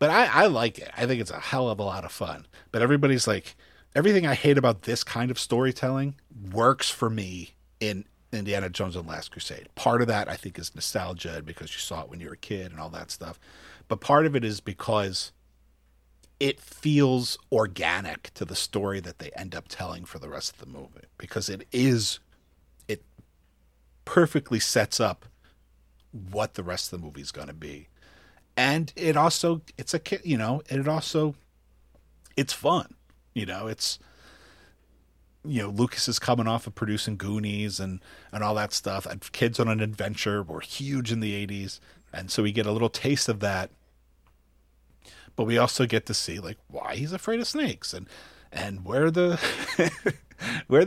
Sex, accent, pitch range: male, American, 80-130 Hz